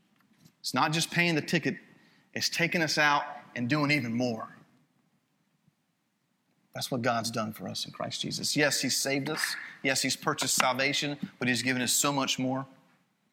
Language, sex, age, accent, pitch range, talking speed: English, male, 40-59, American, 135-180 Hz, 165 wpm